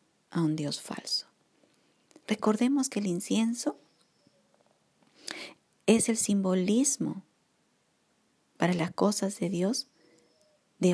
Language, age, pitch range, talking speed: Spanish, 50-69, 180-245 Hz, 95 wpm